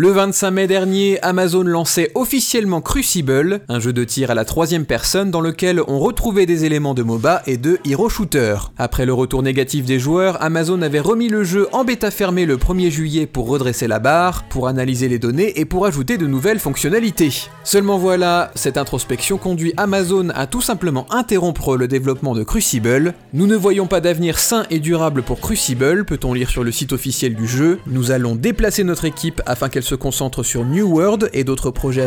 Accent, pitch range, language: French, 130-185 Hz, French